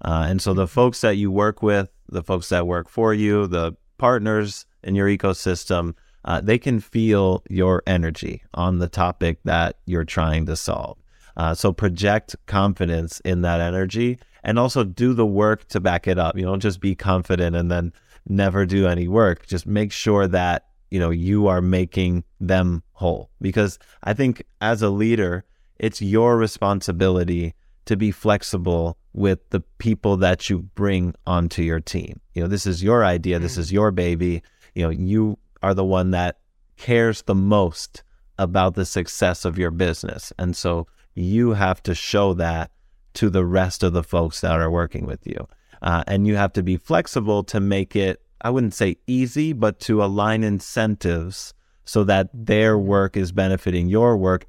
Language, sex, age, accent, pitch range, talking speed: English, male, 30-49, American, 85-105 Hz, 180 wpm